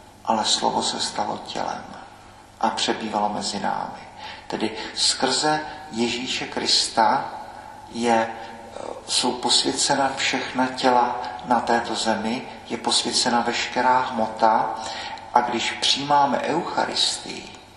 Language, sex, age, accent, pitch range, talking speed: Czech, male, 40-59, native, 115-125 Hz, 100 wpm